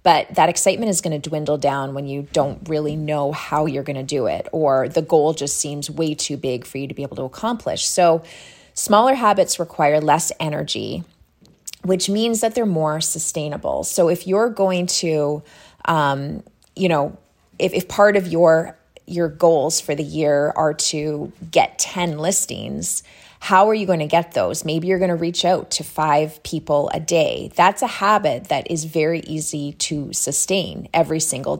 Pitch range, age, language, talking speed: 150-185 Hz, 30-49, English, 185 wpm